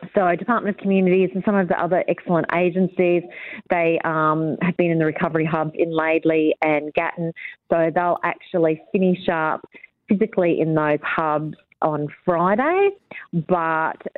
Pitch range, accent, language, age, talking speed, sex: 155-180 Hz, Australian, English, 30-49, 150 wpm, female